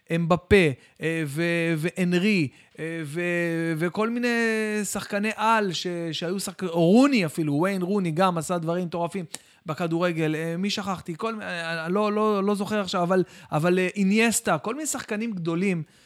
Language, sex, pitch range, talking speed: Hebrew, male, 145-200 Hz, 140 wpm